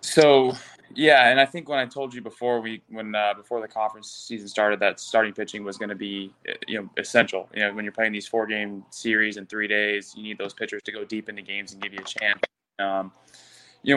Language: English